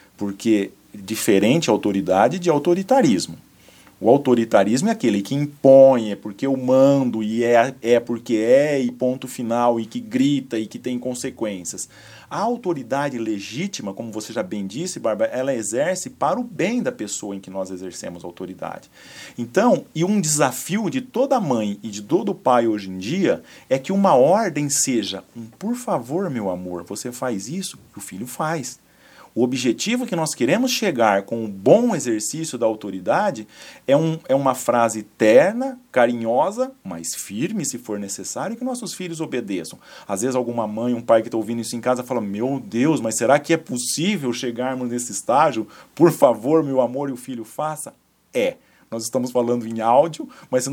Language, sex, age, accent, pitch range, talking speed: Portuguese, male, 40-59, Brazilian, 115-160 Hz, 175 wpm